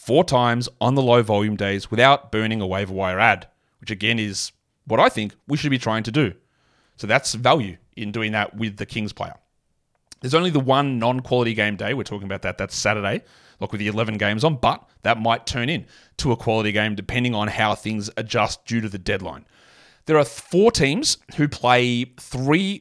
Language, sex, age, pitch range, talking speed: English, male, 30-49, 105-135 Hz, 205 wpm